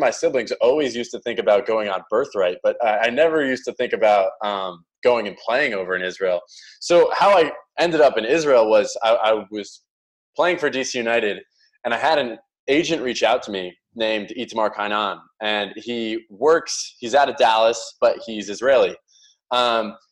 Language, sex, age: English, male, 20-39